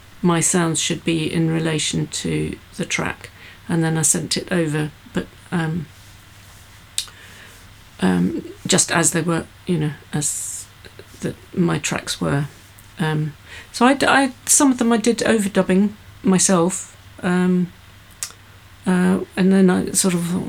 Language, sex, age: English, female, 50-69